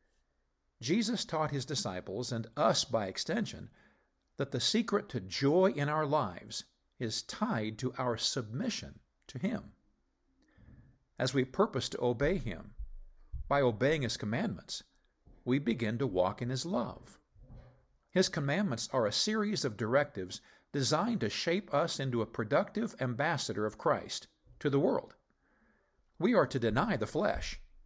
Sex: male